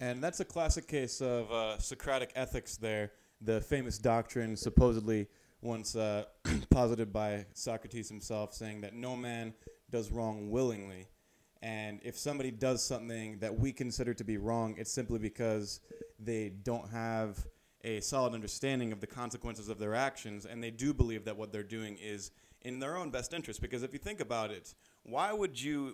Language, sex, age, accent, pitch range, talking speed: English, male, 30-49, American, 110-130 Hz, 175 wpm